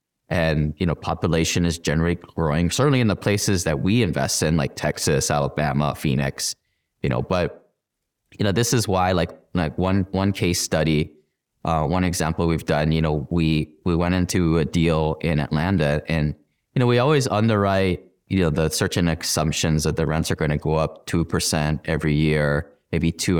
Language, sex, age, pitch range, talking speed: English, male, 20-39, 75-95 Hz, 185 wpm